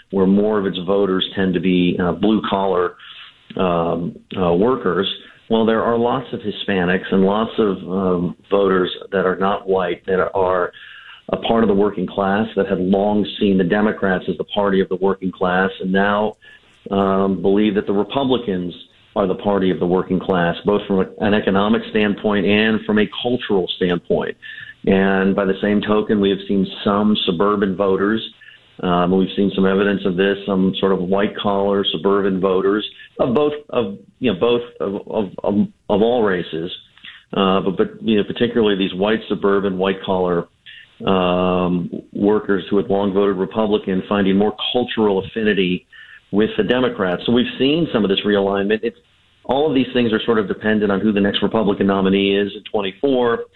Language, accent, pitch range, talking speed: English, American, 95-105 Hz, 175 wpm